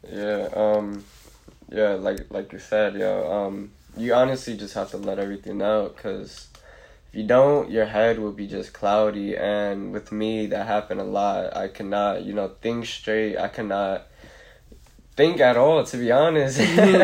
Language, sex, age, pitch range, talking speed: English, male, 10-29, 105-115 Hz, 175 wpm